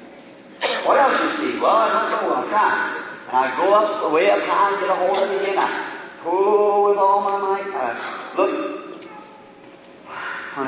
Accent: American